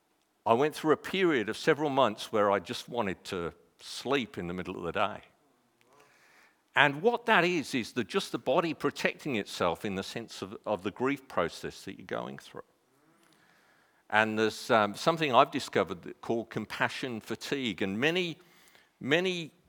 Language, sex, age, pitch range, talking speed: English, male, 50-69, 105-145 Hz, 170 wpm